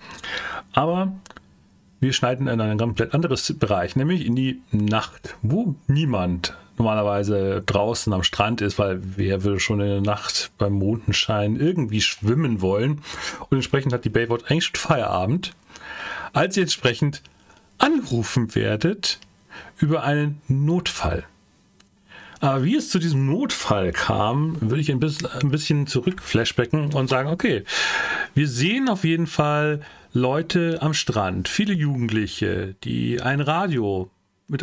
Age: 40-59